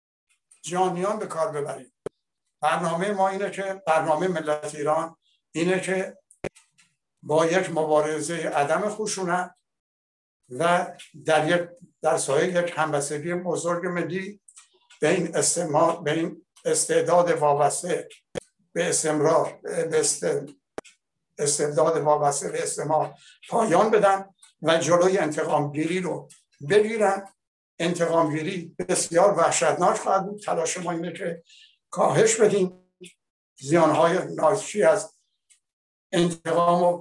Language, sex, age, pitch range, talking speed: Persian, male, 60-79, 155-190 Hz, 100 wpm